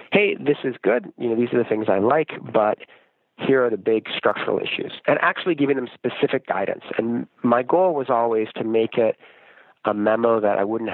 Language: English